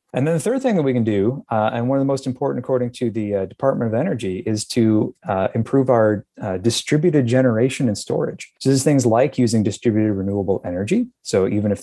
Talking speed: 225 wpm